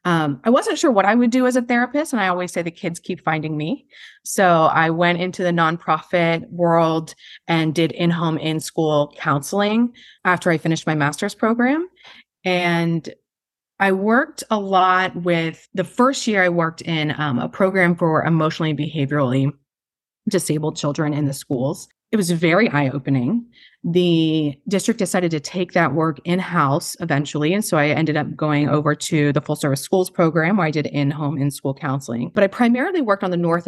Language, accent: English, American